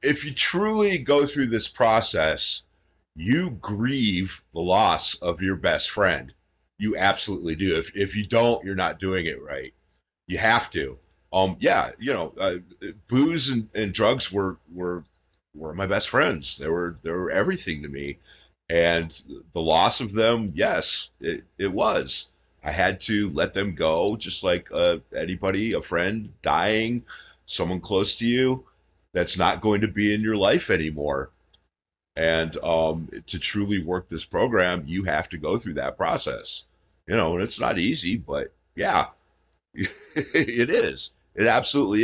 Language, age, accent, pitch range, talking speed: English, 50-69, American, 80-110 Hz, 160 wpm